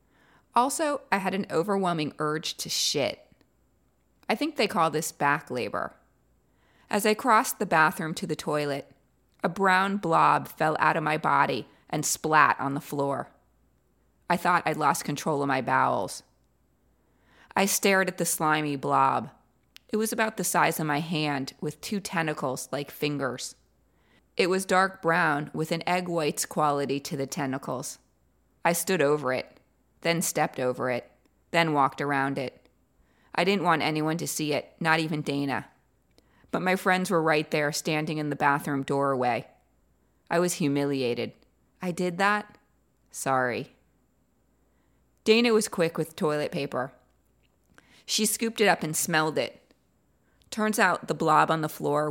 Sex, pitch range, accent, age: female, 140-185 Hz, American, 30-49